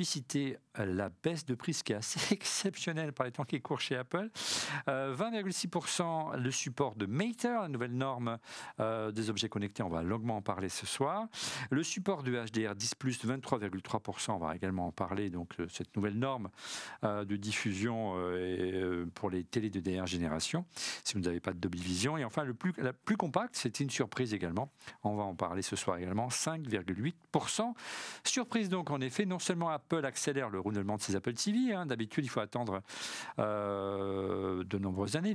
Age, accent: 50-69, French